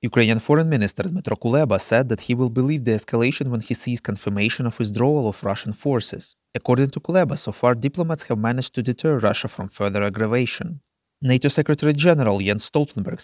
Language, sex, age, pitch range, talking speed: English, male, 20-39, 110-150 Hz, 175 wpm